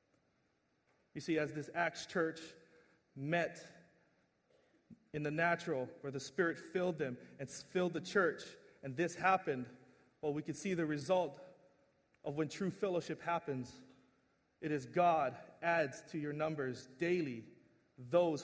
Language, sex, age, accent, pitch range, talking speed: English, male, 30-49, American, 150-185 Hz, 135 wpm